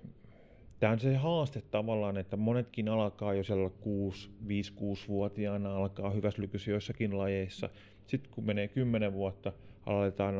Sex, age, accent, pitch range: male, 30-49, native, 100-115 Hz